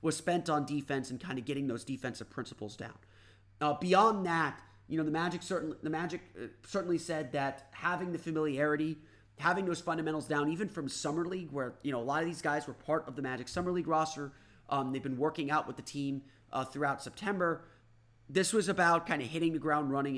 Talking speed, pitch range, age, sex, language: 215 wpm, 130-160 Hz, 30-49, male, English